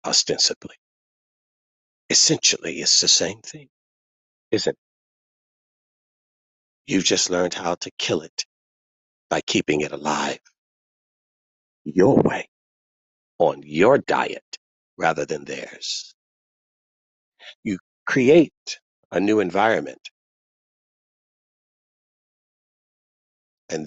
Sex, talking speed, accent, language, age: male, 85 wpm, American, English, 50-69